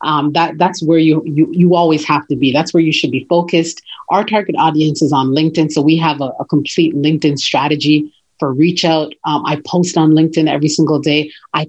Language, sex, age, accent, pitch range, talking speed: English, female, 30-49, American, 150-175 Hz, 220 wpm